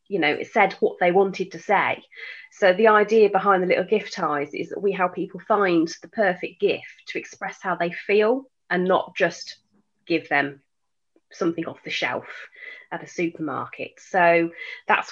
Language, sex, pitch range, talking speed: English, female, 170-215 Hz, 180 wpm